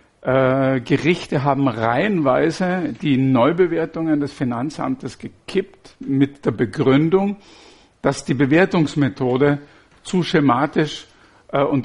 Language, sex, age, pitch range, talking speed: German, male, 50-69, 130-155 Hz, 85 wpm